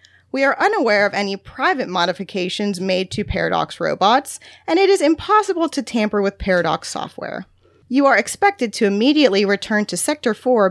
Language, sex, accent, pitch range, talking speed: English, female, American, 175-255 Hz, 160 wpm